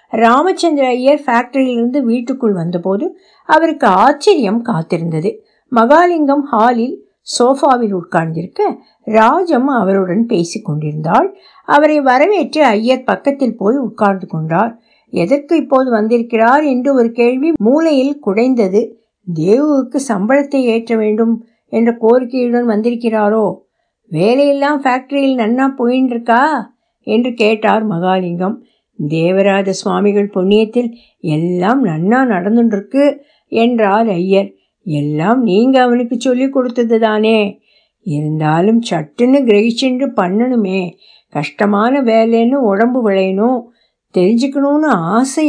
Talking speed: 80 wpm